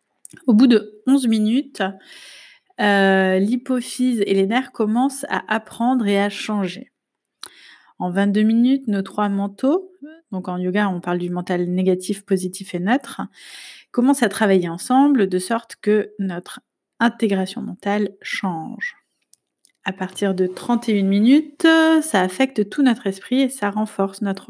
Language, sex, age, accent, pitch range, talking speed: French, female, 30-49, French, 190-235 Hz, 140 wpm